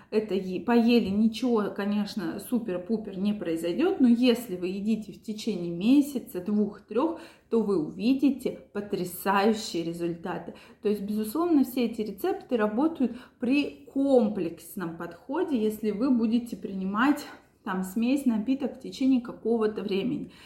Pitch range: 190-240 Hz